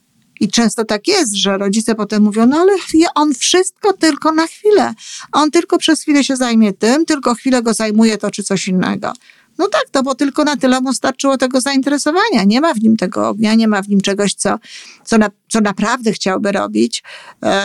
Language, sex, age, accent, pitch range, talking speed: Polish, female, 50-69, native, 200-260 Hz, 205 wpm